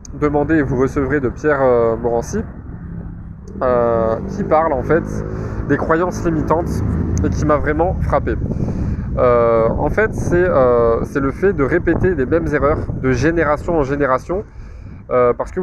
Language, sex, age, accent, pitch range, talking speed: French, male, 20-39, French, 115-160 Hz, 155 wpm